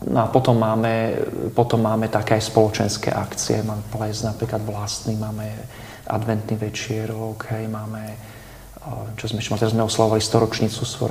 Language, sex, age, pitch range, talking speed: Slovak, male, 40-59, 110-115 Hz, 145 wpm